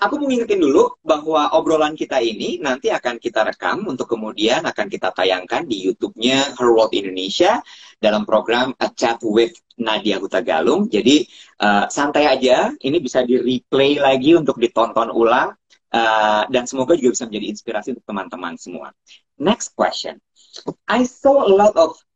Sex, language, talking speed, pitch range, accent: male, Indonesian, 155 wpm, 110-165 Hz, native